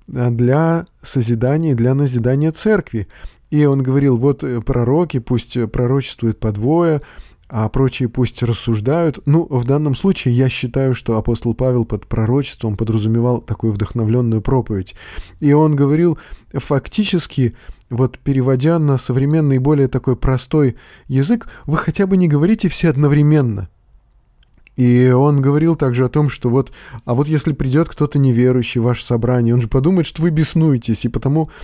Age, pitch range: 20-39, 120-150 Hz